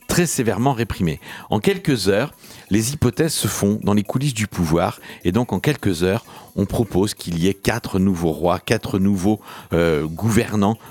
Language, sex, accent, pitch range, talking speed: French, male, French, 95-130 Hz, 175 wpm